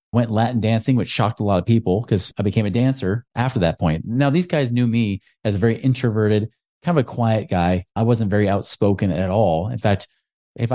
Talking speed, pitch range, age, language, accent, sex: 225 wpm, 100-135 Hz, 30-49, English, American, male